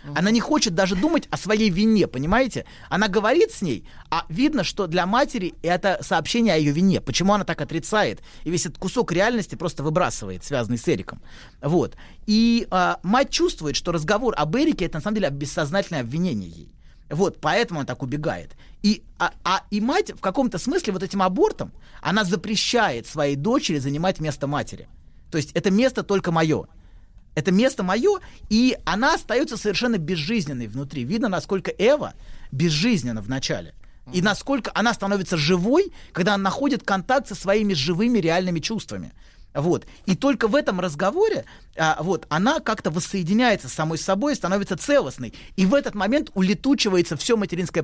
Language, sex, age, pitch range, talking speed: Russian, male, 30-49, 155-220 Hz, 170 wpm